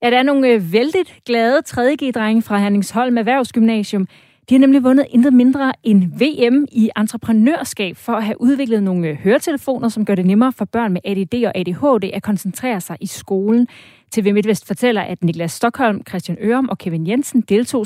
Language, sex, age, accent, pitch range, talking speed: Danish, female, 30-49, native, 200-250 Hz, 190 wpm